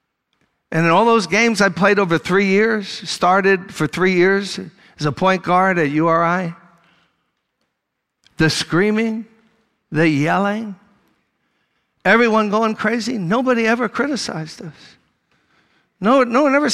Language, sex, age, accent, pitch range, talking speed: English, male, 60-79, American, 180-245 Hz, 125 wpm